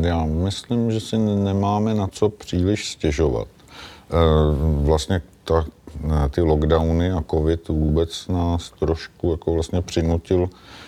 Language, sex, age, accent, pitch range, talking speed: Czech, male, 50-69, native, 80-85 Hz, 100 wpm